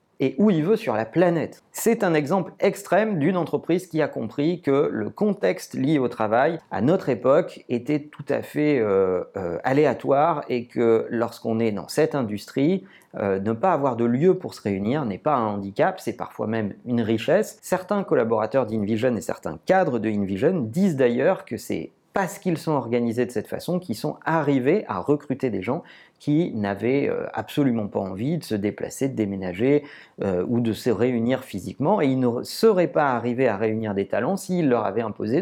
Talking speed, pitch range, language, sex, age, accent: 190 wpm, 115-170 Hz, French, male, 40-59, French